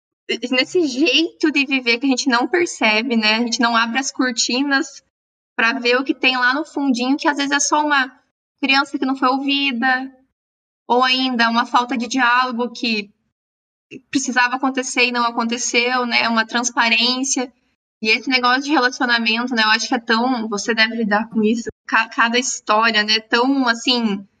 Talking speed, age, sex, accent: 175 wpm, 20-39, female, Brazilian